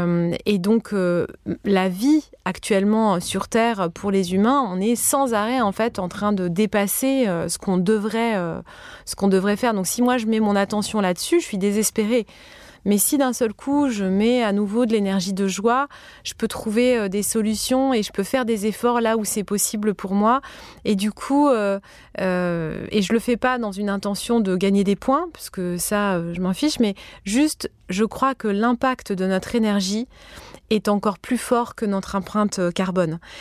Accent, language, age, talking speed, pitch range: French, French, 20-39, 205 wpm, 195-240 Hz